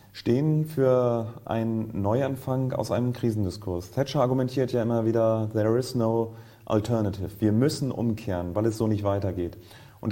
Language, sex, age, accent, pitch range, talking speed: German, male, 30-49, German, 110-130 Hz, 150 wpm